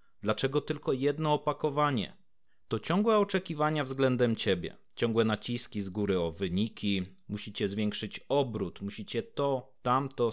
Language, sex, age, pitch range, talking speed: Polish, male, 30-49, 105-145 Hz, 120 wpm